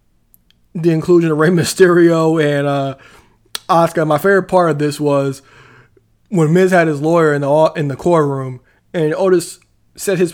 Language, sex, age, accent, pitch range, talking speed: English, male, 20-39, American, 150-190 Hz, 165 wpm